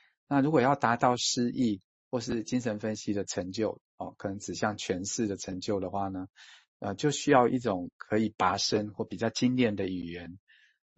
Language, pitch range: Chinese, 100-125 Hz